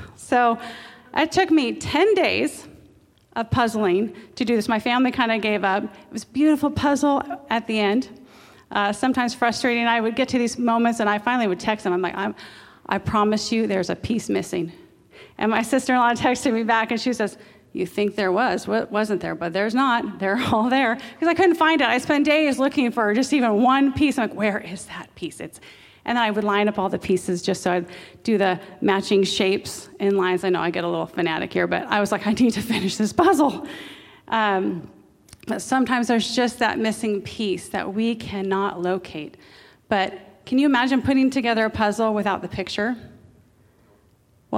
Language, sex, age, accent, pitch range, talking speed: English, female, 30-49, American, 195-245 Hz, 205 wpm